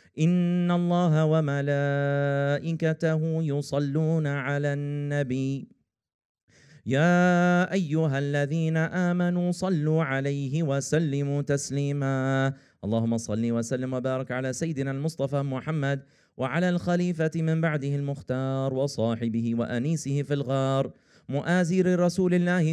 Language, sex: English, male